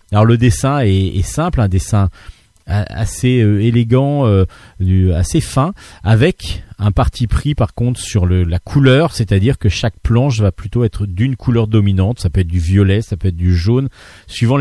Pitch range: 95-120 Hz